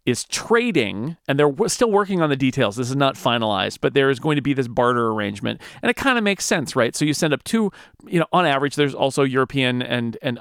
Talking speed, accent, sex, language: 255 wpm, American, male, English